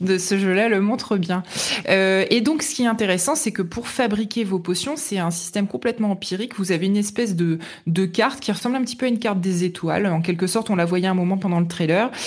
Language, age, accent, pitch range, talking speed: French, 20-39, French, 170-215 Hz, 255 wpm